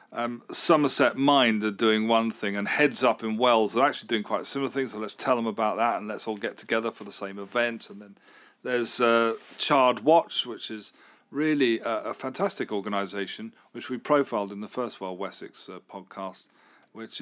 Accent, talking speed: British, 200 wpm